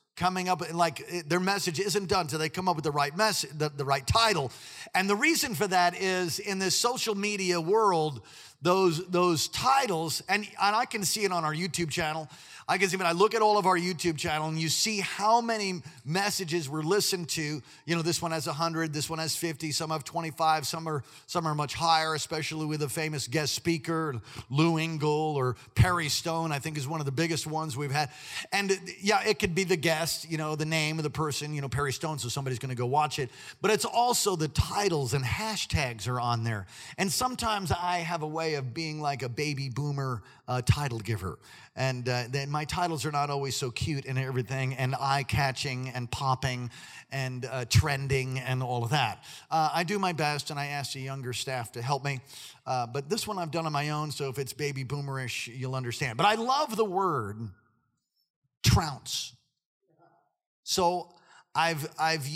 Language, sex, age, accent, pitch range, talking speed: English, male, 50-69, American, 135-180 Hz, 210 wpm